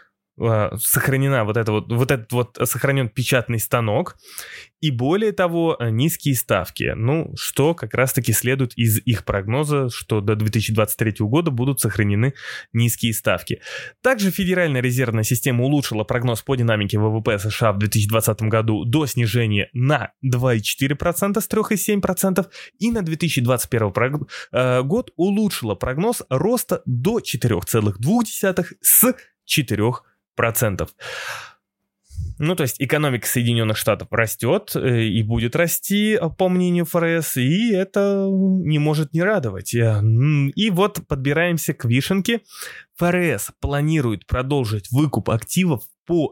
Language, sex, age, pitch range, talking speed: Russian, male, 20-39, 115-165 Hz, 120 wpm